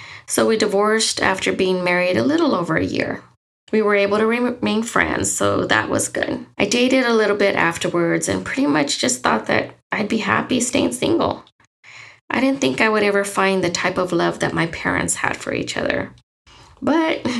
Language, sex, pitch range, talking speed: English, female, 175-220 Hz, 195 wpm